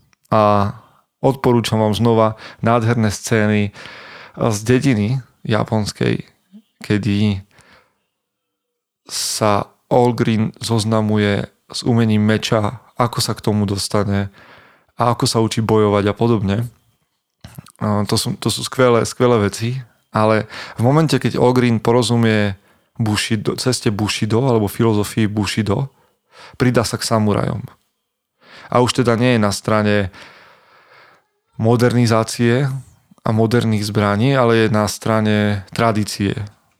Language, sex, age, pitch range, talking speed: Slovak, male, 30-49, 105-120 Hz, 110 wpm